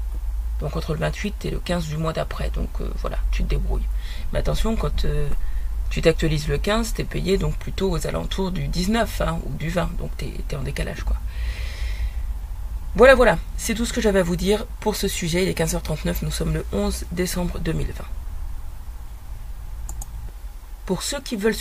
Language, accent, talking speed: French, French, 190 wpm